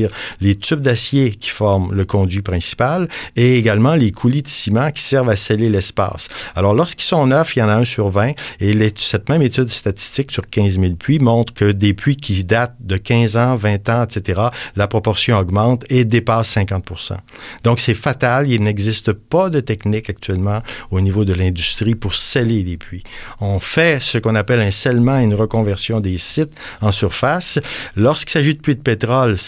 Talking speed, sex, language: 195 wpm, male, French